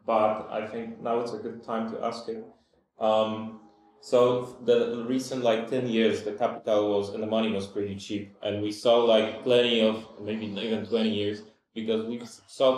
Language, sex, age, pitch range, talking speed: English, male, 20-39, 100-115 Hz, 190 wpm